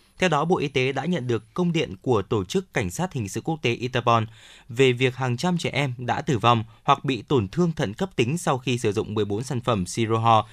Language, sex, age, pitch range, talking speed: Vietnamese, male, 20-39, 115-150 Hz, 250 wpm